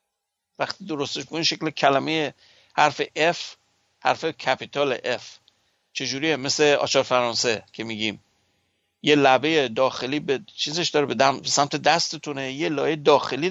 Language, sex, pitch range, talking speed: Persian, male, 125-170 Hz, 130 wpm